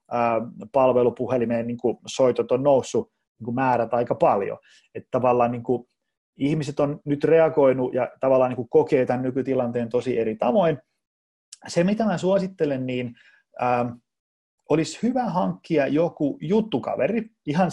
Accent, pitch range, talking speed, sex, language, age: native, 120-155 Hz, 110 wpm, male, Finnish, 30-49